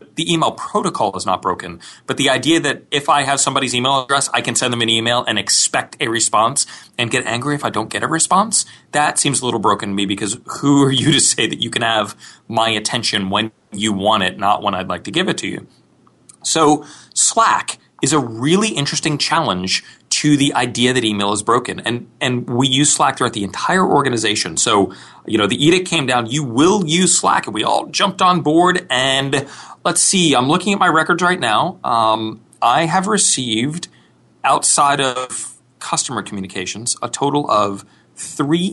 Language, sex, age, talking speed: English, male, 30-49, 200 wpm